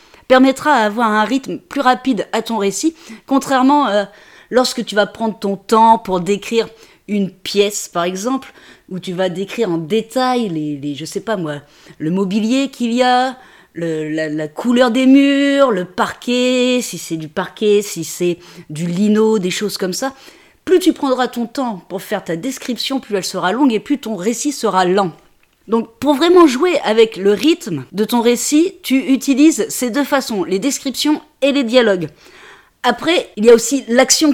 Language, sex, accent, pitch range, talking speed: French, female, French, 200-275 Hz, 185 wpm